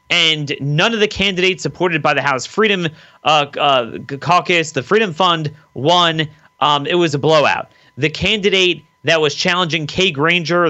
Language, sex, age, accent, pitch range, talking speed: English, male, 30-49, American, 145-185 Hz, 165 wpm